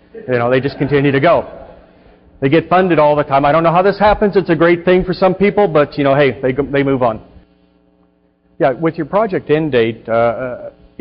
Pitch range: 110-135 Hz